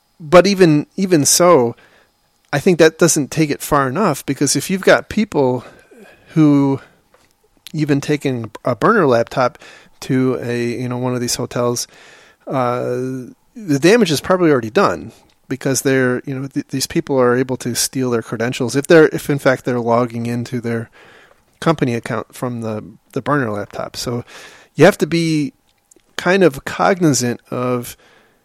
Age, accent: 30-49, American